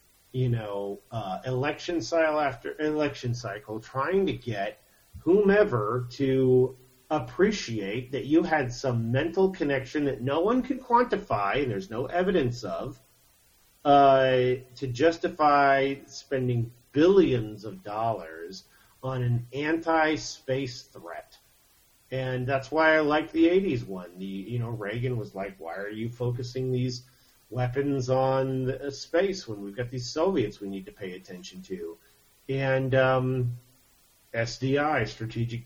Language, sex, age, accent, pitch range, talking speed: English, male, 40-59, American, 115-150 Hz, 130 wpm